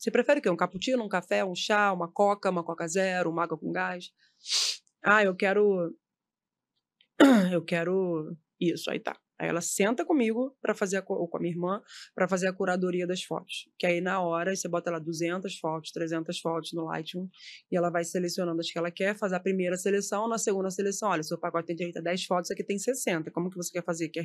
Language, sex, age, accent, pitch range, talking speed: Portuguese, female, 20-39, Brazilian, 170-205 Hz, 220 wpm